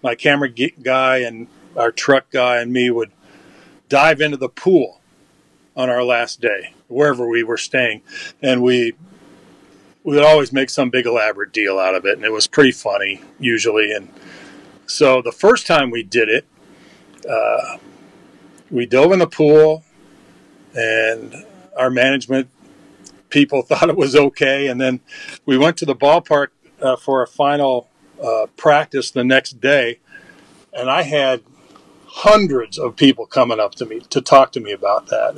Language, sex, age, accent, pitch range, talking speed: English, male, 40-59, American, 120-145 Hz, 160 wpm